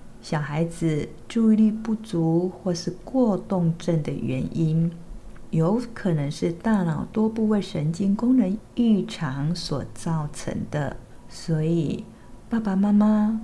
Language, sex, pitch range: Chinese, female, 155-195 Hz